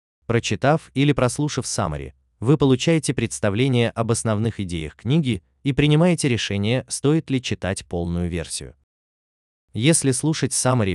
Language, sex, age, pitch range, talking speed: Russian, male, 20-39, 85-135 Hz, 120 wpm